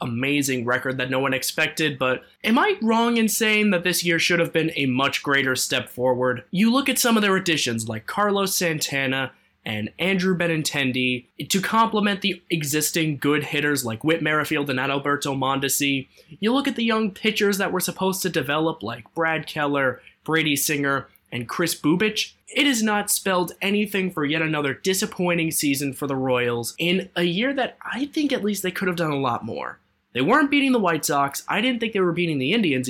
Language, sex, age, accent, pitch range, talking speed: English, male, 20-39, American, 130-185 Hz, 200 wpm